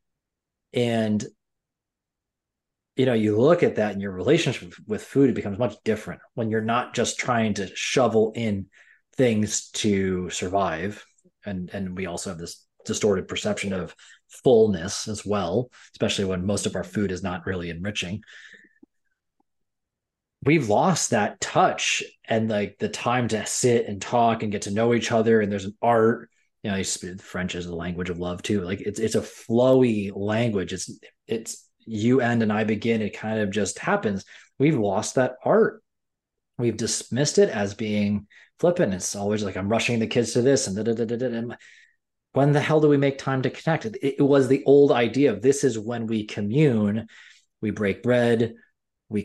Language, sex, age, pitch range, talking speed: English, male, 20-39, 100-120 Hz, 180 wpm